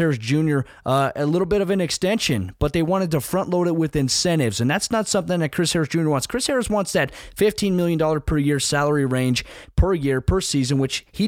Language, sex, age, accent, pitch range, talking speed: English, male, 20-39, American, 135-160 Hz, 230 wpm